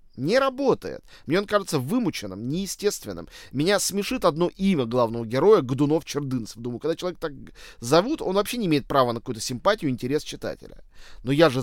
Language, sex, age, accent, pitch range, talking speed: Russian, male, 20-39, native, 120-165 Hz, 170 wpm